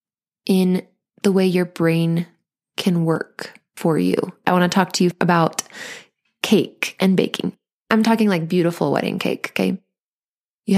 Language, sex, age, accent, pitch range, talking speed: English, female, 20-39, American, 175-210 Hz, 150 wpm